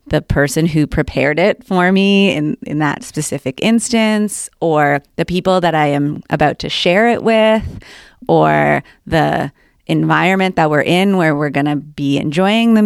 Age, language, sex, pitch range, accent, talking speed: 30-49, English, female, 145-195 Hz, American, 170 wpm